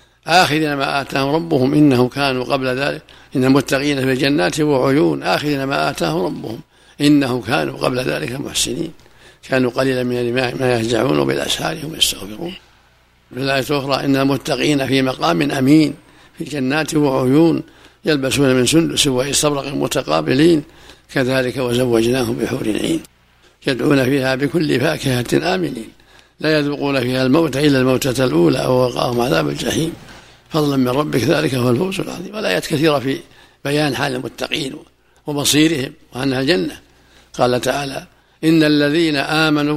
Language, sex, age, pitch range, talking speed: Arabic, male, 60-79, 125-150 Hz, 130 wpm